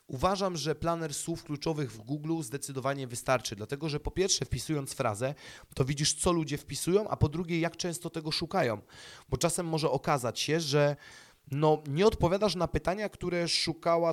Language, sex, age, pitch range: Polish, male, 30-49, 120-165 Hz